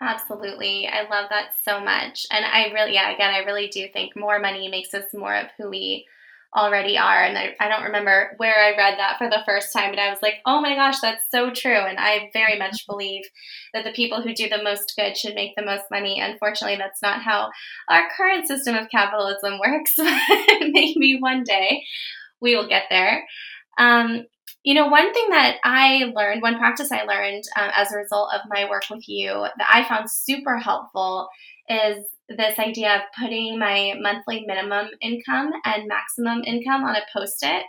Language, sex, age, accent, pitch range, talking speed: English, female, 10-29, American, 205-235 Hz, 195 wpm